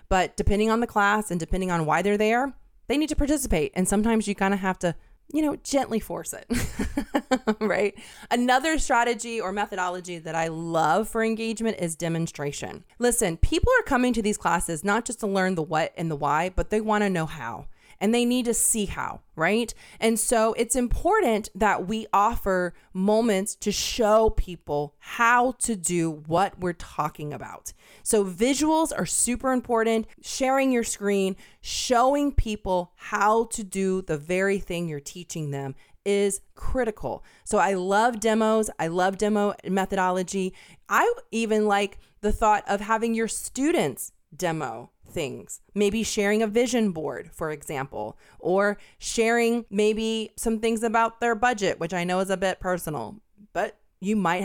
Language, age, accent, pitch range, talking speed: English, 30-49, American, 175-230 Hz, 165 wpm